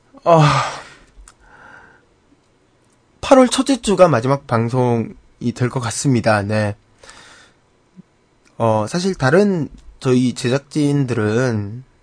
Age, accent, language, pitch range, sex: 20-39, native, Korean, 120-150 Hz, male